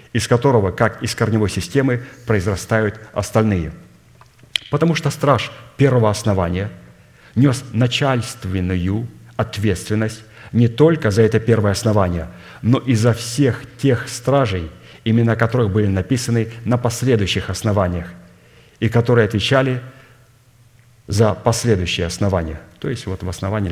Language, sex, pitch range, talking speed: Russian, male, 95-120 Hz, 115 wpm